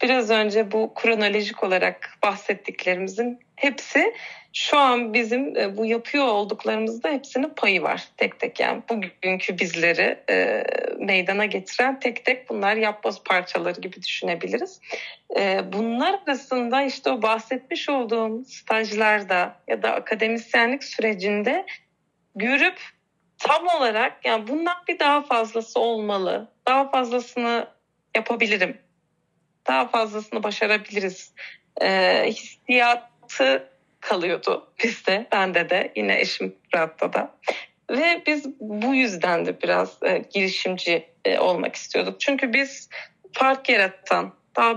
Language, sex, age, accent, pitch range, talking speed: Turkish, female, 30-49, native, 200-260 Hz, 110 wpm